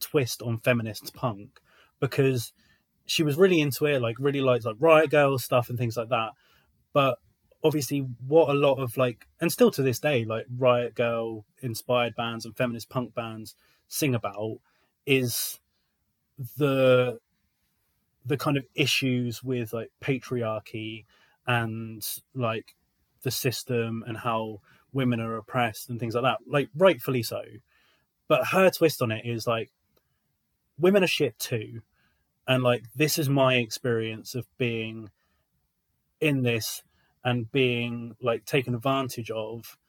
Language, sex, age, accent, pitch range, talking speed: English, male, 20-39, British, 115-140 Hz, 145 wpm